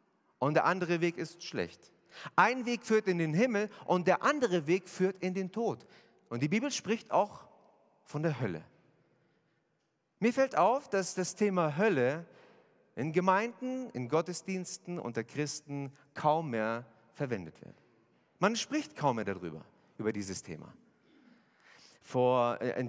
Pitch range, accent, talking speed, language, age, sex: 135-200 Hz, German, 140 wpm, German, 40-59, male